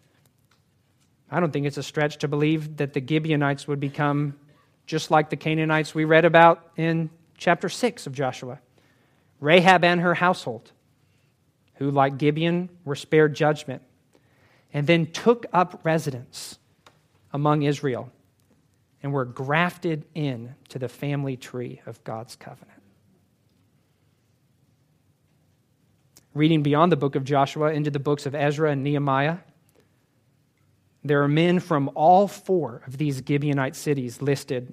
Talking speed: 135 wpm